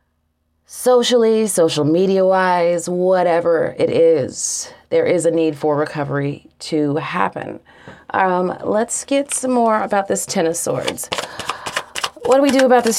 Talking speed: 145 wpm